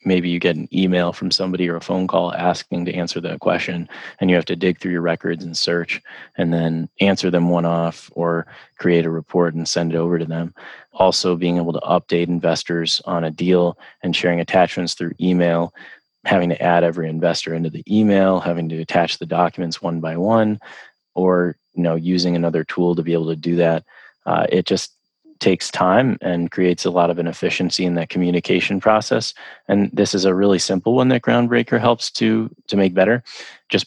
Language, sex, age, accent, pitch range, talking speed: English, male, 20-39, American, 85-90 Hz, 195 wpm